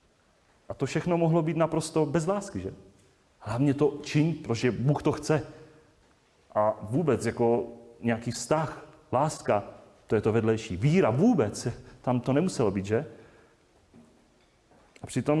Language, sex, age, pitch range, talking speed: Czech, male, 30-49, 115-145 Hz, 140 wpm